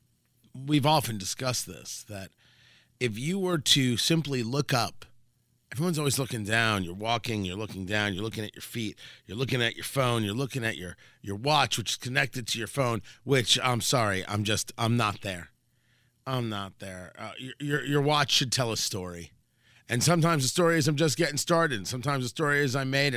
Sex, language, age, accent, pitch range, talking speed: male, English, 40-59, American, 110-140 Hz, 200 wpm